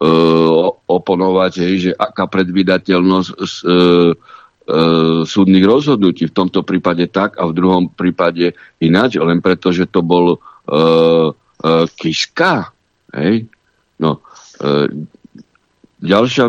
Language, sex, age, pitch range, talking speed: Slovak, male, 60-79, 90-100 Hz, 115 wpm